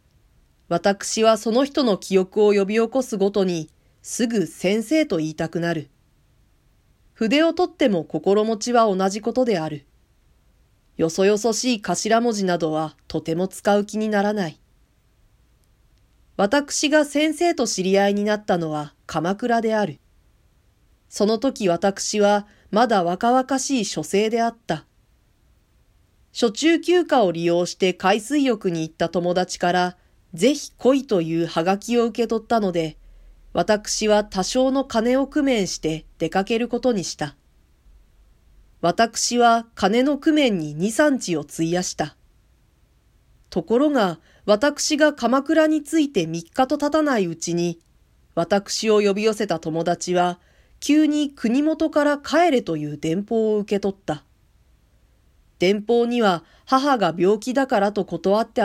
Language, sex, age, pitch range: Japanese, female, 40-59, 170-245 Hz